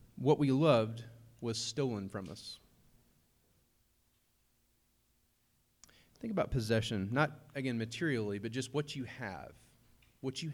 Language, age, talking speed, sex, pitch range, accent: English, 30-49, 115 wpm, male, 115-140 Hz, American